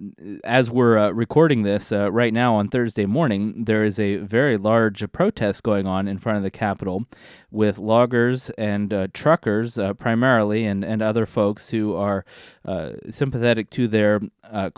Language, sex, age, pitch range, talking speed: English, male, 30-49, 100-115 Hz, 170 wpm